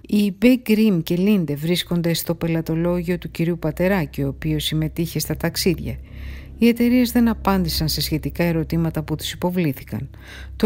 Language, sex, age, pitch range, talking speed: Greek, female, 60-79, 160-195 Hz, 145 wpm